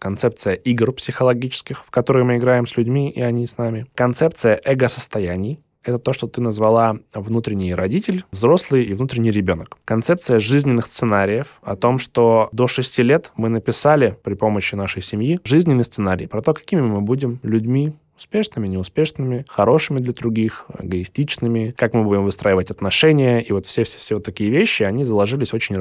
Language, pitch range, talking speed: Russian, 105-130 Hz, 160 wpm